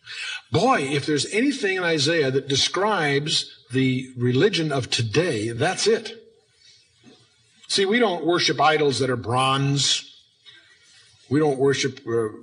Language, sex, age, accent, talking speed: English, male, 50-69, American, 125 wpm